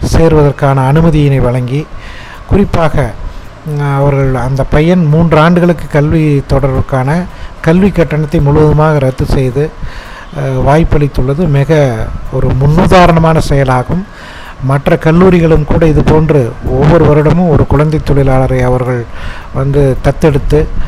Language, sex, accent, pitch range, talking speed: Tamil, male, native, 130-160 Hz, 95 wpm